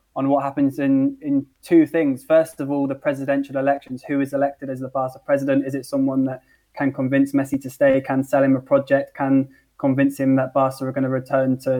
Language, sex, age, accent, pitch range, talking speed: English, male, 20-39, British, 135-150 Hz, 225 wpm